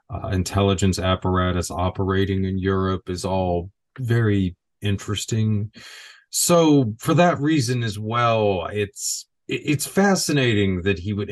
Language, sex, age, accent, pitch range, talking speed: English, male, 30-49, American, 90-105 Hz, 115 wpm